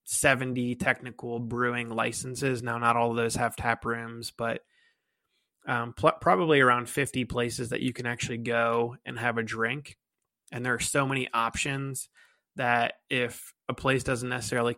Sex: male